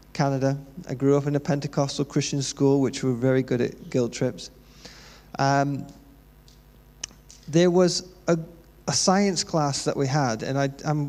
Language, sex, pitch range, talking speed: English, male, 135-180 Hz, 160 wpm